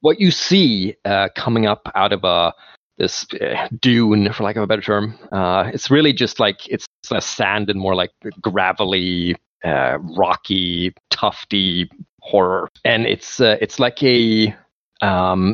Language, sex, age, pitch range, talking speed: English, male, 30-49, 95-125 Hz, 165 wpm